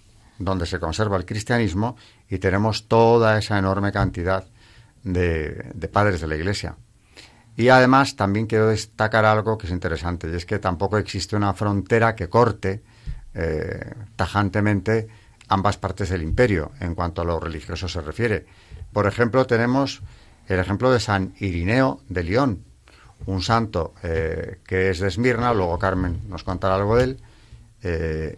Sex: male